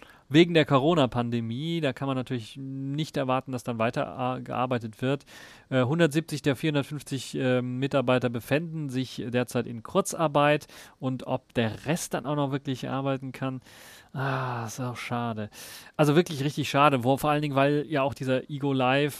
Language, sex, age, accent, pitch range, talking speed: German, male, 30-49, German, 125-145 Hz, 165 wpm